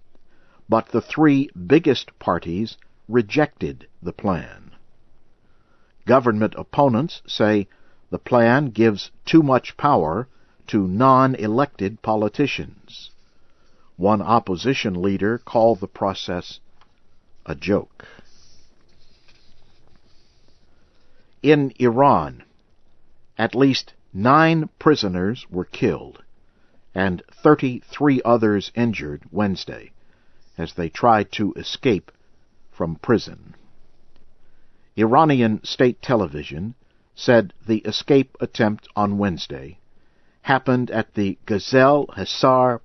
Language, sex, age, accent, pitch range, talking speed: English, male, 60-79, American, 100-130 Hz, 85 wpm